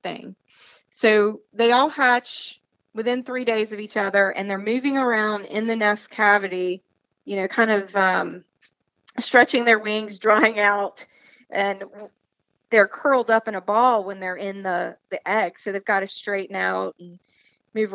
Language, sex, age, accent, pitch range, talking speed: English, female, 30-49, American, 195-240 Hz, 165 wpm